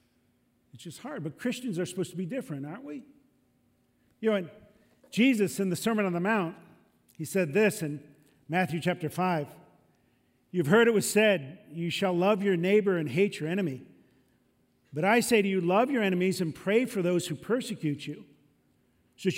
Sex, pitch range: male, 170-230 Hz